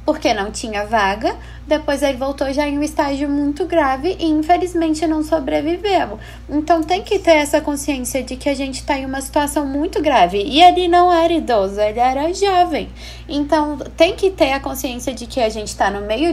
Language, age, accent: Portuguese, 10-29, Brazilian